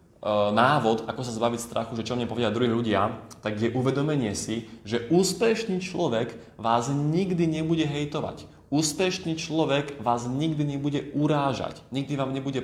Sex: male